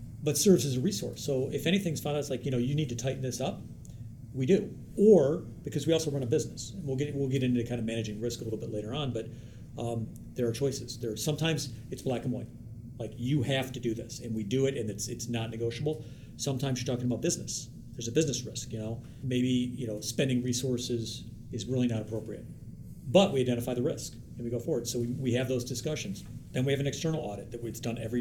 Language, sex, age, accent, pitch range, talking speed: English, male, 40-59, American, 115-130 Hz, 245 wpm